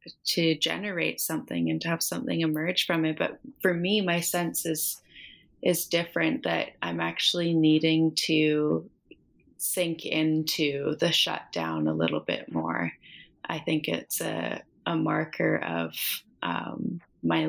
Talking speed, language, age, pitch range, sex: 135 wpm, English, 20-39, 145-165 Hz, female